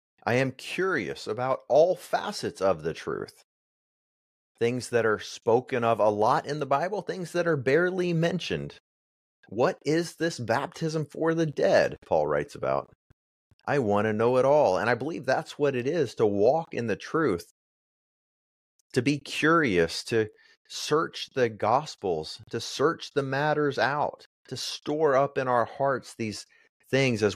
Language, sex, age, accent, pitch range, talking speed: English, male, 30-49, American, 110-155 Hz, 160 wpm